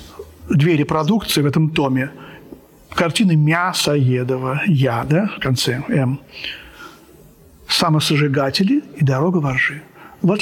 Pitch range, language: 145-180 Hz, Russian